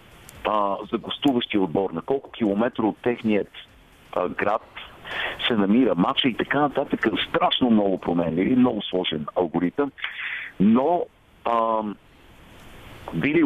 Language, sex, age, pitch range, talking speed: Bulgarian, male, 50-69, 95-135 Hz, 105 wpm